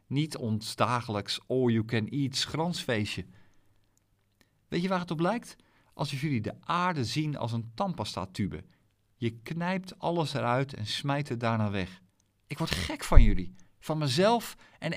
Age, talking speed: 50-69, 150 wpm